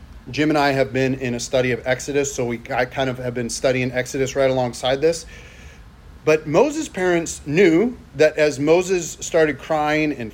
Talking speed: 185 wpm